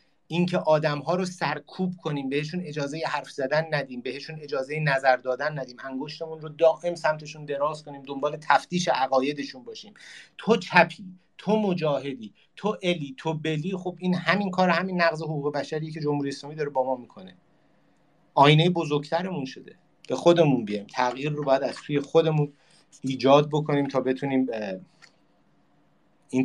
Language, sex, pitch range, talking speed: Persian, male, 140-170 Hz, 150 wpm